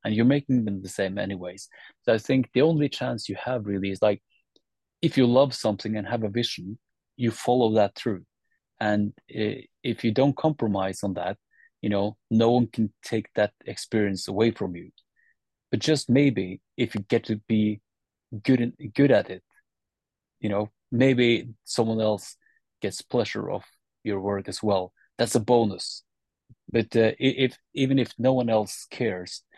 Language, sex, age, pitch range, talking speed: English, male, 30-49, 100-125 Hz, 170 wpm